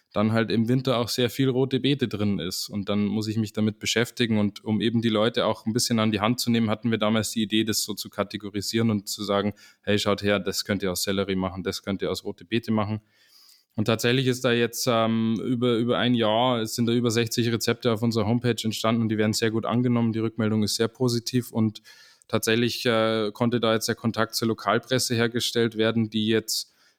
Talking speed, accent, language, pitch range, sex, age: 230 wpm, German, German, 105-120 Hz, male, 20-39